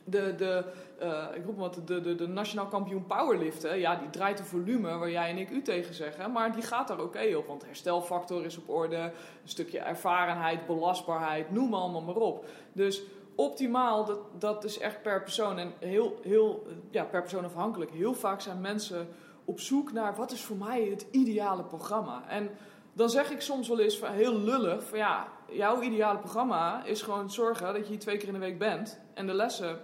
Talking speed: 200 wpm